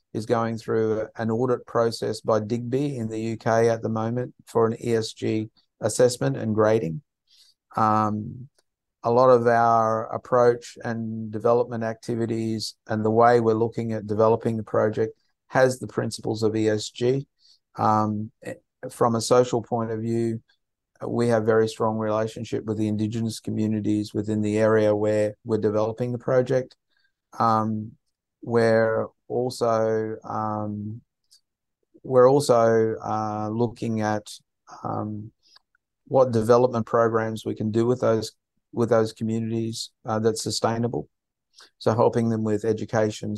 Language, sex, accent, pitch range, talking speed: English, male, Australian, 110-120 Hz, 130 wpm